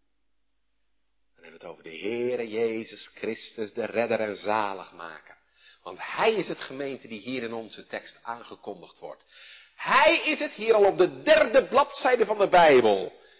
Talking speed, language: 160 wpm, Dutch